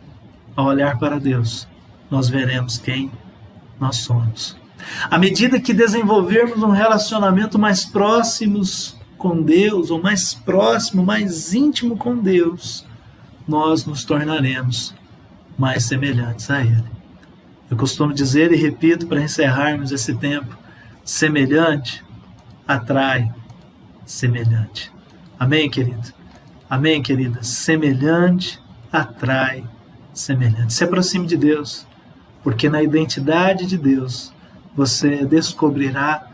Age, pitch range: 40-59, 130-165 Hz